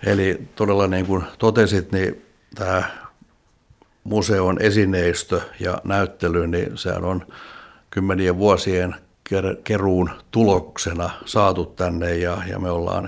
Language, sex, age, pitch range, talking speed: Finnish, male, 60-79, 90-95 Hz, 100 wpm